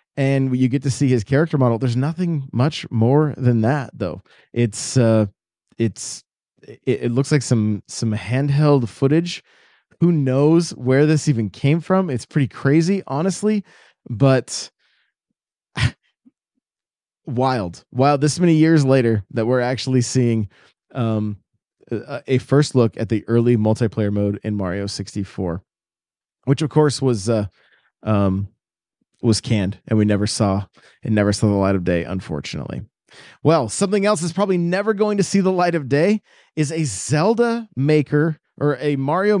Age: 20-39